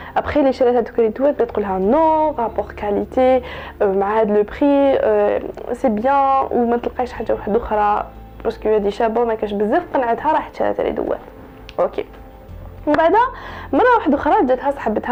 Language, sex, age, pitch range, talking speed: Arabic, female, 20-39, 220-290 Hz, 75 wpm